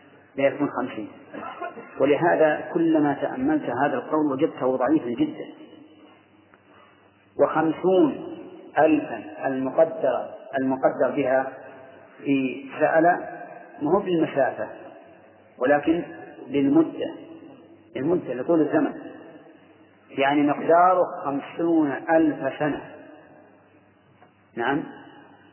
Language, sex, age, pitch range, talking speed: Arabic, male, 40-59, 140-160 Hz, 75 wpm